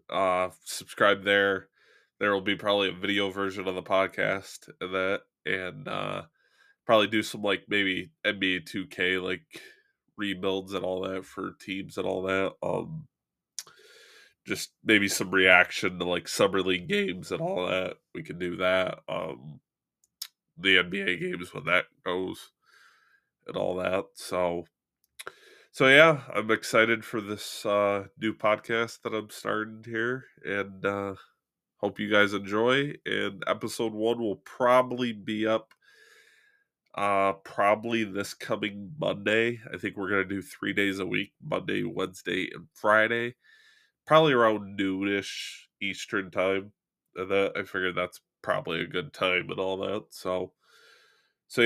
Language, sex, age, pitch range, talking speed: English, male, 20-39, 95-115 Hz, 145 wpm